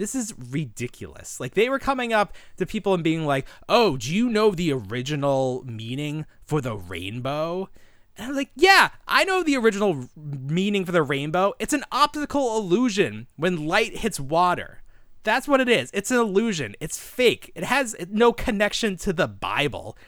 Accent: American